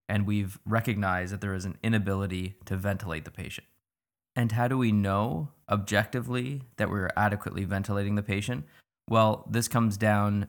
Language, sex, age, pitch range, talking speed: English, male, 20-39, 95-110 Hz, 160 wpm